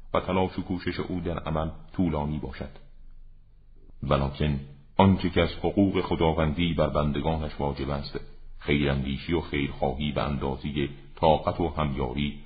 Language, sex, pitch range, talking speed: Persian, male, 70-90 Hz, 135 wpm